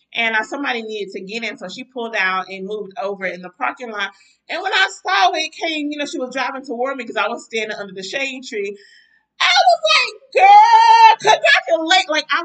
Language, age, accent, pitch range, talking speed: English, 30-49, American, 210-310 Hz, 225 wpm